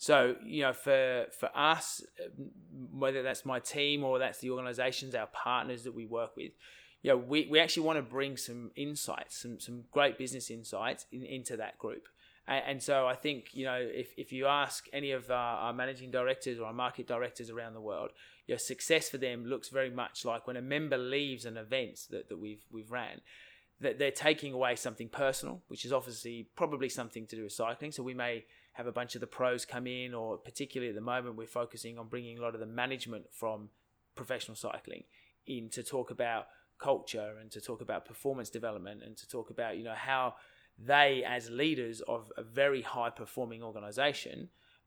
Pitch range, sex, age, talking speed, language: 115-135 Hz, male, 20-39, 205 wpm, English